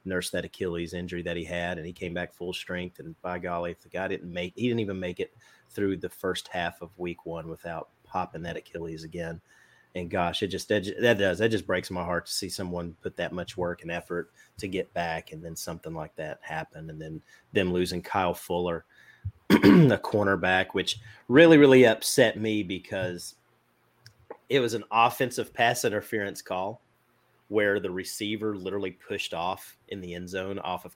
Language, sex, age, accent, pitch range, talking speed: English, male, 30-49, American, 85-110 Hz, 195 wpm